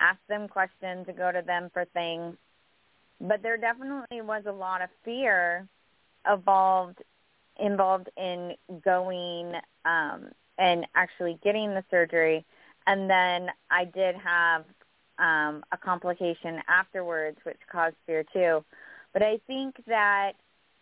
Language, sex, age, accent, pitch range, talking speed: English, female, 20-39, American, 175-205 Hz, 125 wpm